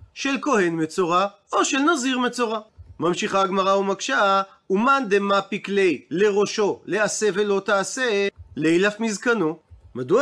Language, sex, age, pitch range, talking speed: Hebrew, male, 40-59, 195-250 Hz, 115 wpm